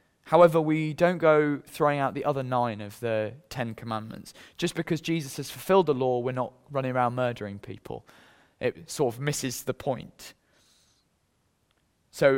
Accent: British